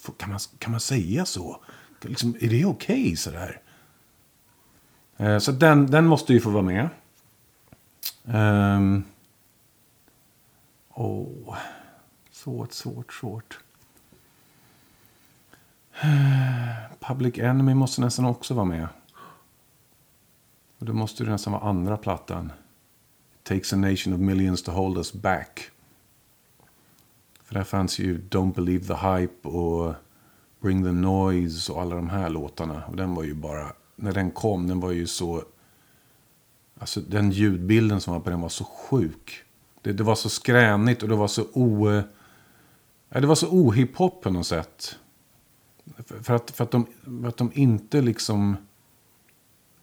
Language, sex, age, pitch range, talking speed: Swedish, male, 50-69, 95-125 Hz, 140 wpm